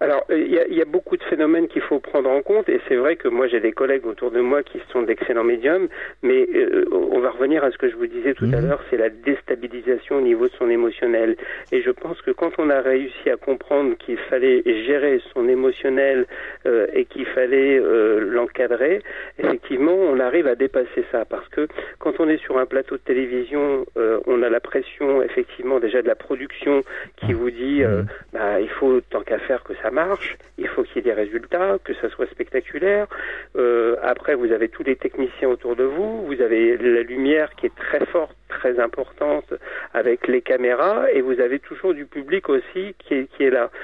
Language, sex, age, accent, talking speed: French, male, 40-59, French, 215 wpm